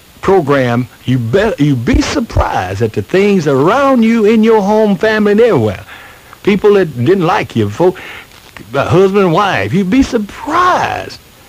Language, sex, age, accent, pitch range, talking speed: English, male, 60-79, American, 120-190 Hz, 155 wpm